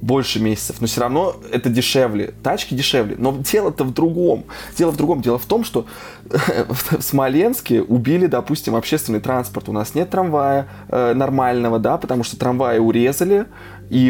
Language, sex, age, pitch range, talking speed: Russian, male, 20-39, 110-135 Hz, 165 wpm